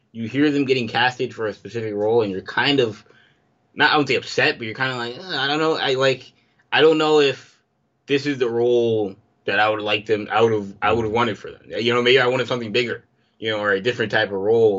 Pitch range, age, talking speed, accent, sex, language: 100-125 Hz, 20-39, 265 wpm, American, male, English